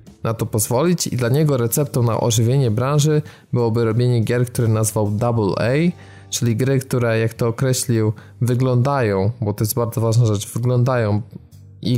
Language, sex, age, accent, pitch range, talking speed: Polish, male, 20-39, native, 110-140 Hz, 160 wpm